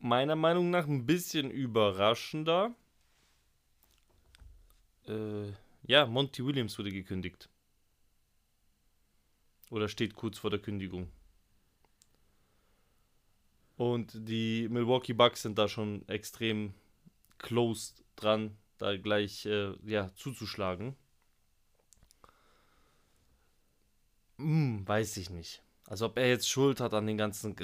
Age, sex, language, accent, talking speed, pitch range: 20-39, male, German, German, 100 wpm, 100-120 Hz